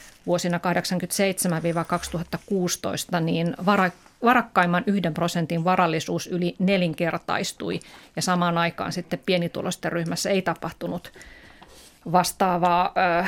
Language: Finnish